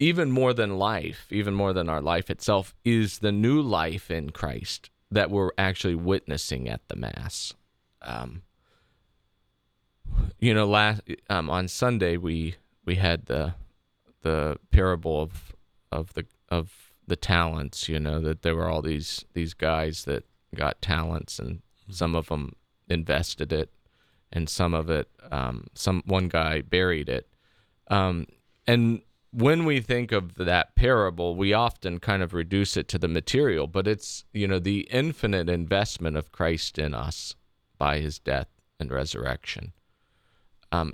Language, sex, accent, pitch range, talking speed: English, male, American, 75-100 Hz, 150 wpm